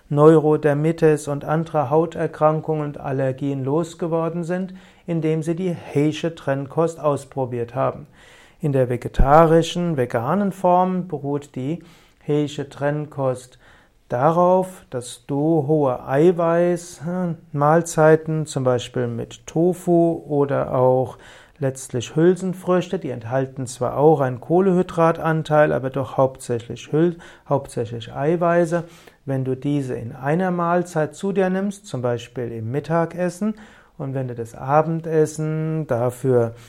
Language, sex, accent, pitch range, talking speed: German, male, German, 135-170 Hz, 110 wpm